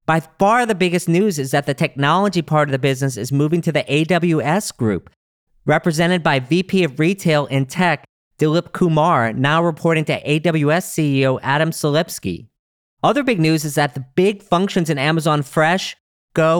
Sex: male